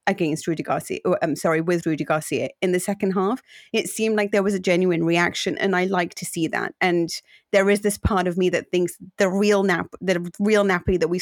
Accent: British